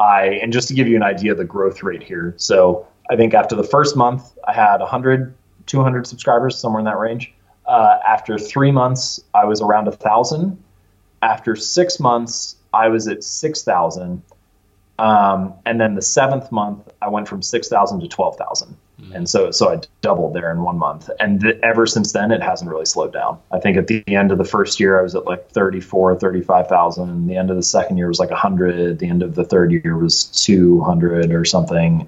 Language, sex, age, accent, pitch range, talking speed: English, male, 30-49, American, 95-120 Hz, 200 wpm